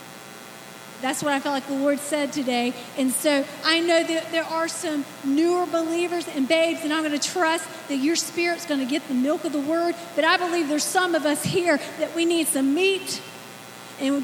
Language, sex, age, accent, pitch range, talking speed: English, female, 40-59, American, 220-335 Hz, 215 wpm